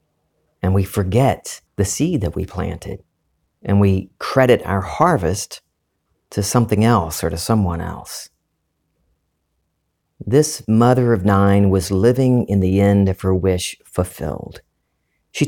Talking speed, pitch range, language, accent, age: 130 wpm, 90-115 Hz, English, American, 40-59